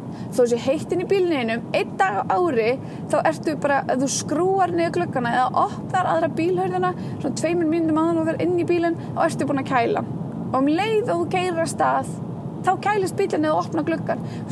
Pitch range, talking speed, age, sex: 245-355 Hz, 205 wpm, 20-39, female